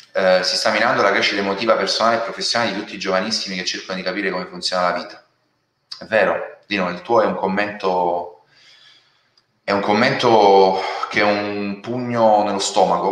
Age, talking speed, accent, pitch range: 30-49, 180 wpm, native, 95-100 Hz